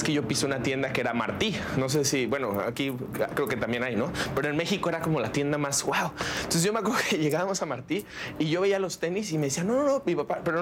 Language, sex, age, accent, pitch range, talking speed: Spanish, male, 30-49, Mexican, 145-200 Hz, 275 wpm